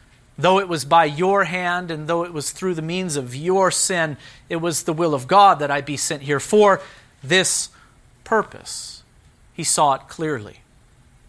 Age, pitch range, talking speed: 40-59, 125-165 Hz, 180 wpm